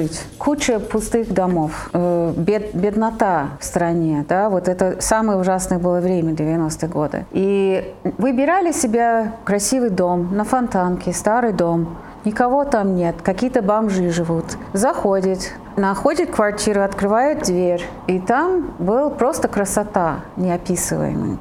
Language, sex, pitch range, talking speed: Russian, female, 180-230 Hz, 120 wpm